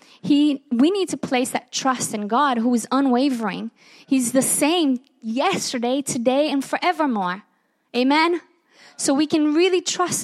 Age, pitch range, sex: 20-39, 240-300 Hz, female